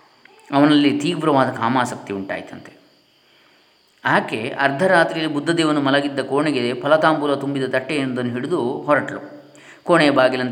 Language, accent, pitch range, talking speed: Kannada, native, 110-135 Hz, 90 wpm